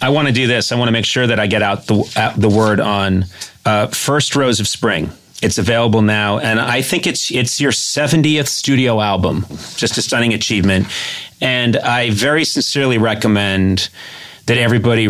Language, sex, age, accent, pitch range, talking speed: English, male, 30-49, American, 100-120 Hz, 185 wpm